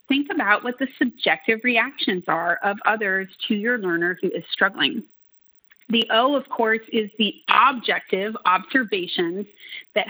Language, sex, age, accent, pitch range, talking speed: English, female, 30-49, American, 185-240 Hz, 145 wpm